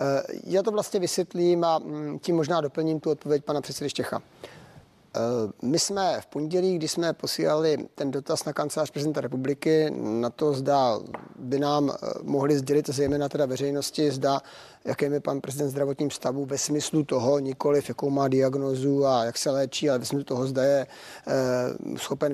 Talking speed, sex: 160 wpm, male